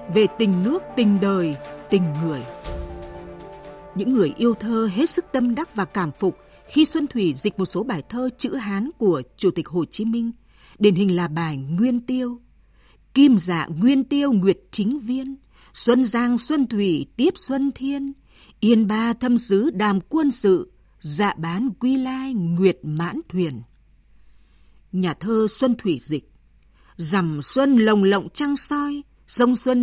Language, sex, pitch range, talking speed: Vietnamese, female, 180-255 Hz, 165 wpm